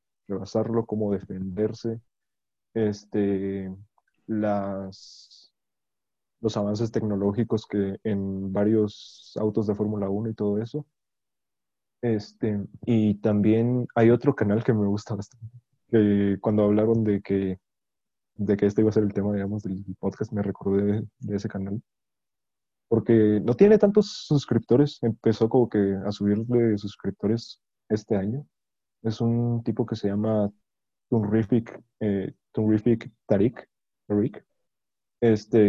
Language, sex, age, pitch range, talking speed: Spanish, male, 20-39, 100-115 Hz, 120 wpm